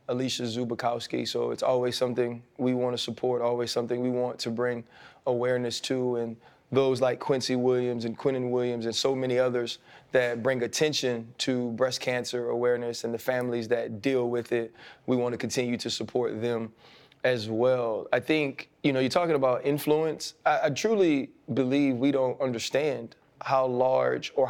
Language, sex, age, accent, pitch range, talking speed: English, male, 20-39, American, 120-135 Hz, 175 wpm